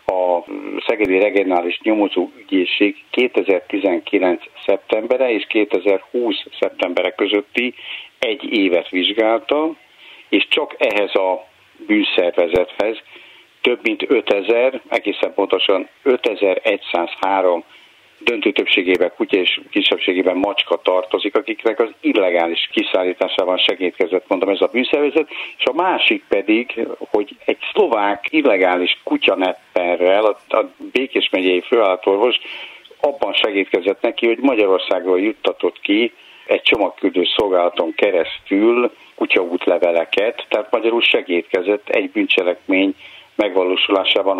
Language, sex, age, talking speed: Hungarian, male, 60-79, 95 wpm